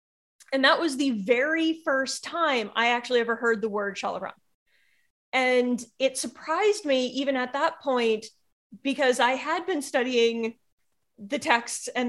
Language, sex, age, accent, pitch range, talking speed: English, female, 30-49, American, 225-275 Hz, 150 wpm